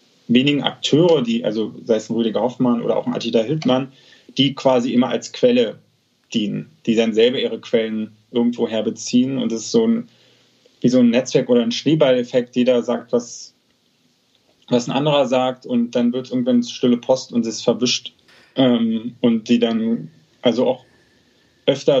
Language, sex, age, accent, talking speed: German, male, 20-39, German, 175 wpm